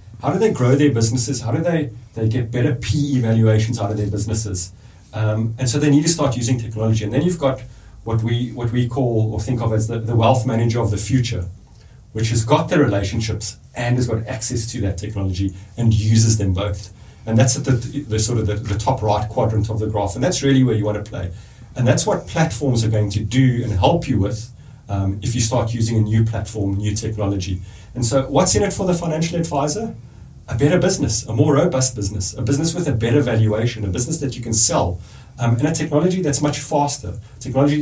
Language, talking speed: English, 230 wpm